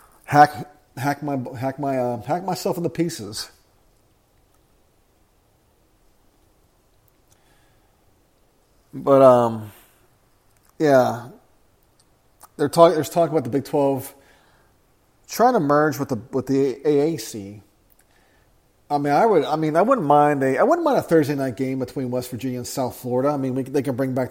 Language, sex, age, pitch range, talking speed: English, male, 40-59, 120-145 Hz, 150 wpm